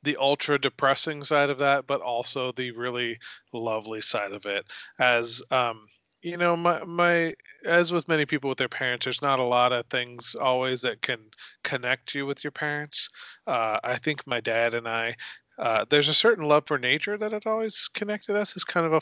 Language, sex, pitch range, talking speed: English, male, 125-155 Hz, 200 wpm